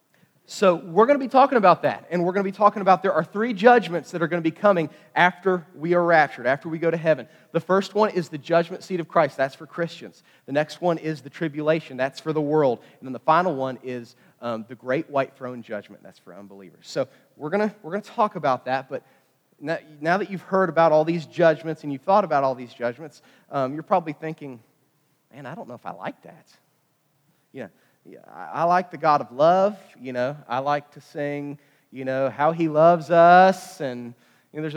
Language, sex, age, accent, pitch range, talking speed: English, male, 30-49, American, 145-205 Hz, 230 wpm